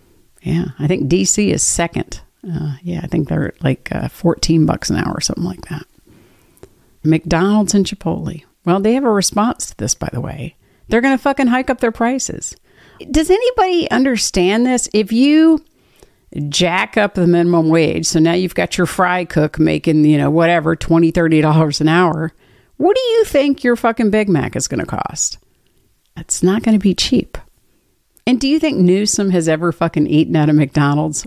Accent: American